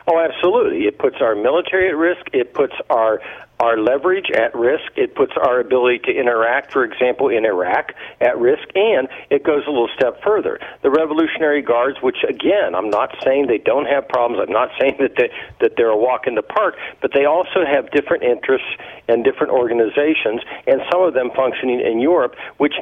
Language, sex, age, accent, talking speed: English, male, 60-79, American, 195 wpm